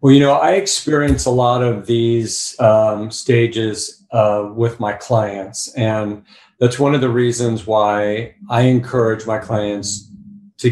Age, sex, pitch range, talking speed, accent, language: 50-69, male, 105-125 Hz, 150 wpm, American, English